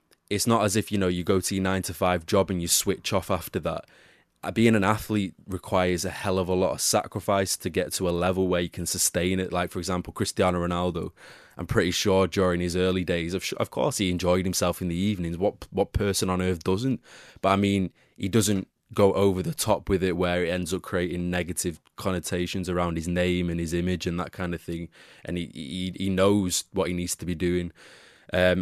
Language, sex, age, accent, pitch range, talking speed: English, male, 20-39, British, 90-100 Hz, 225 wpm